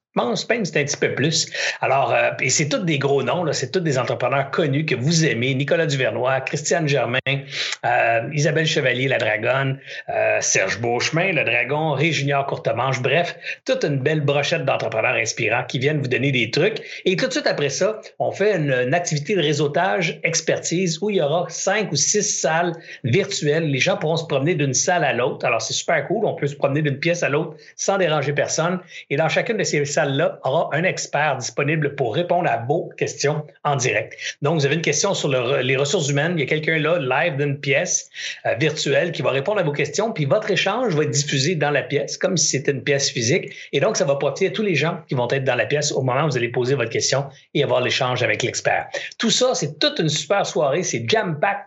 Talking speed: 225 wpm